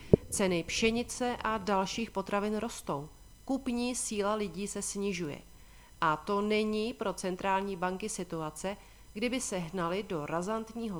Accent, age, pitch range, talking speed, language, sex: native, 40-59, 170-215 Hz, 125 wpm, Czech, female